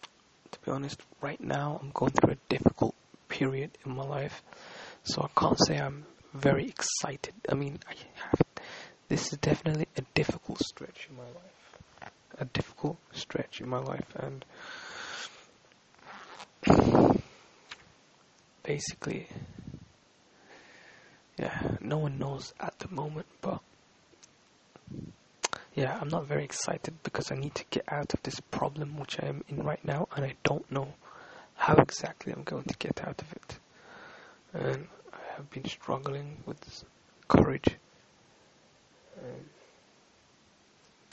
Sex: male